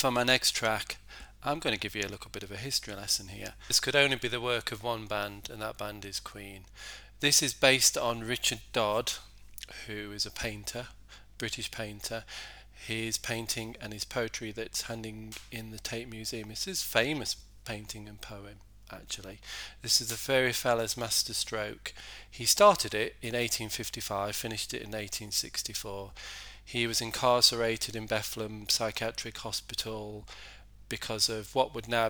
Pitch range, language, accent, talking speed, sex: 100-115 Hz, English, British, 165 wpm, male